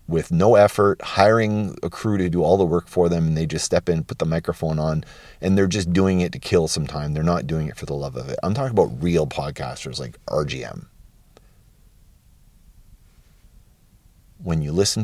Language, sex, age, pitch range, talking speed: English, male, 40-59, 85-110 Hz, 200 wpm